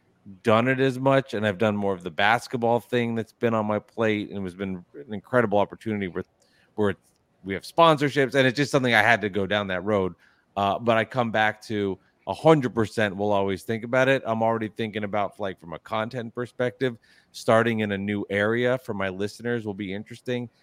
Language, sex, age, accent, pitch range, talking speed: English, male, 30-49, American, 100-120 Hz, 210 wpm